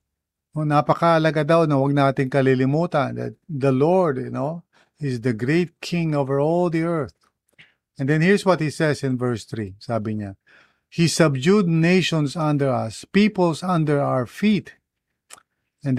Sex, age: male, 50-69